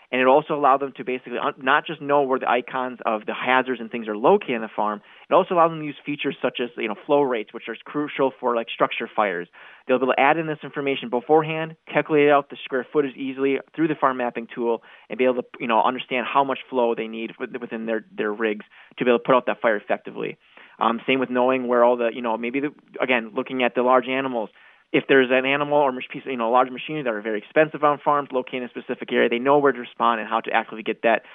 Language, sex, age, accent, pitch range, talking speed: English, male, 20-39, American, 120-145 Hz, 265 wpm